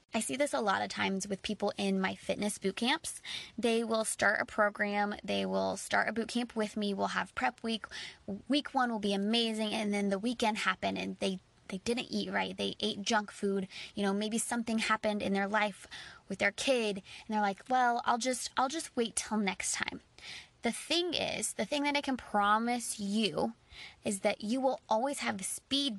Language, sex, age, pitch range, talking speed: English, female, 20-39, 200-245 Hz, 210 wpm